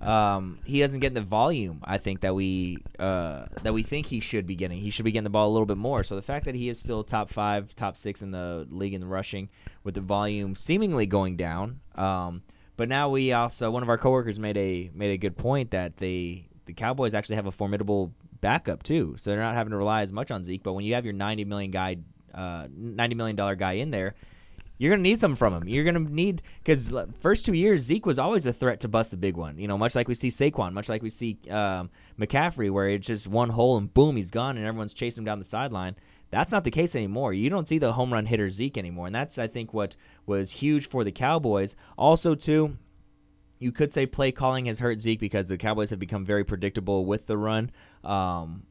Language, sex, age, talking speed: English, male, 20-39, 250 wpm